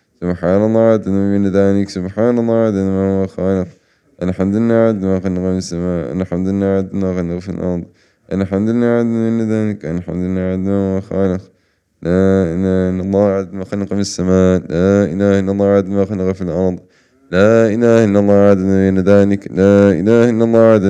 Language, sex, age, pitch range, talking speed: English, male, 20-39, 95-105 Hz, 70 wpm